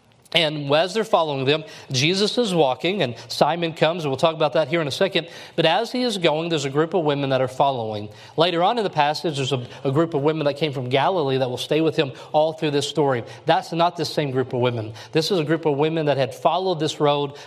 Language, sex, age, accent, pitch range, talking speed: English, male, 40-59, American, 125-160 Hz, 260 wpm